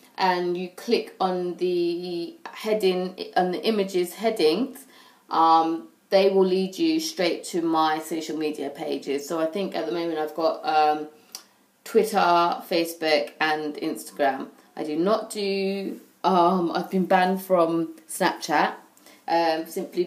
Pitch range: 160-200 Hz